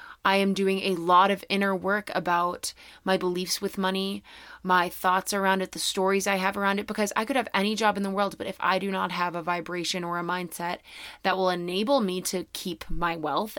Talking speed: 225 wpm